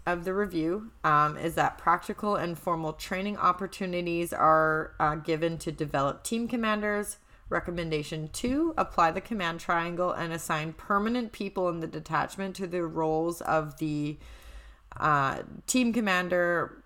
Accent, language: American, English